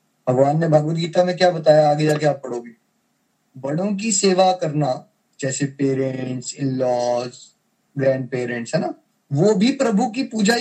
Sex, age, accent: male, 20-39, native